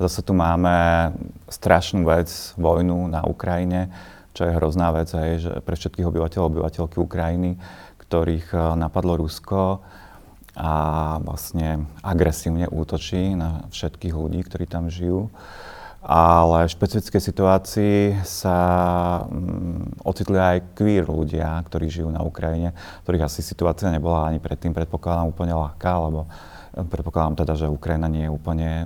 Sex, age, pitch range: male, 30-49, 80-95 Hz